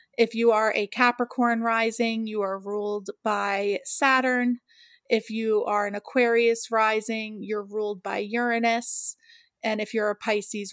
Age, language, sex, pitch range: 30-49, English, female, 210-250 Hz